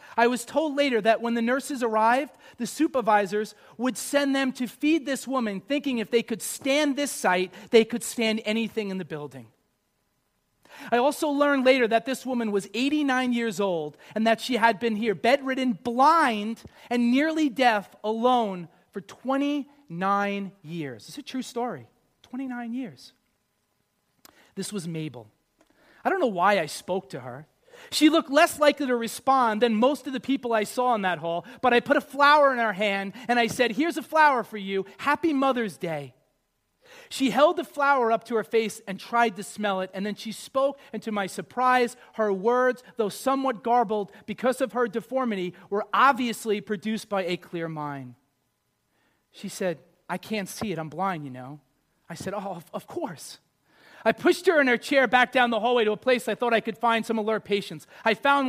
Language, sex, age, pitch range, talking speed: English, male, 40-59, 200-260 Hz, 190 wpm